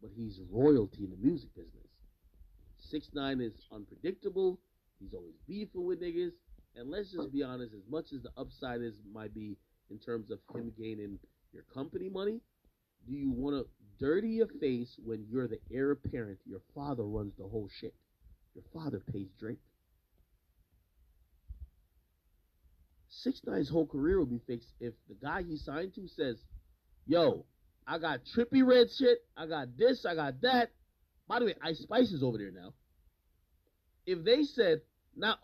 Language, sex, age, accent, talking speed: English, male, 40-59, American, 165 wpm